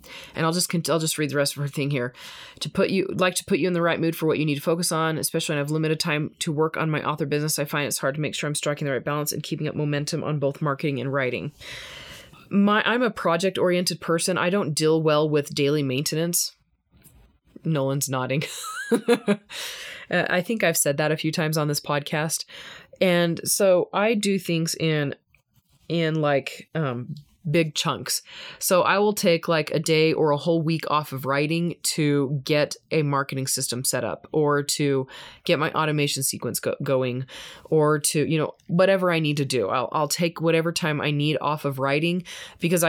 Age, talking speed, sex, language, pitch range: 20-39, 205 wpm, female, English, 145-170 Hz